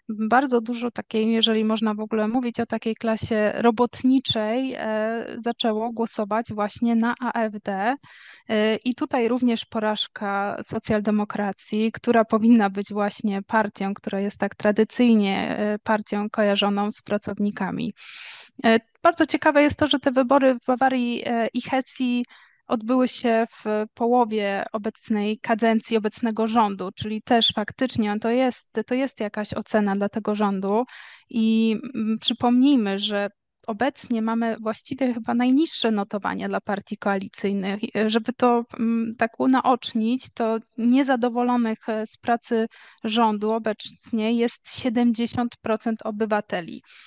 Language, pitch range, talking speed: Polish, 215-240 Hz, 115 wpm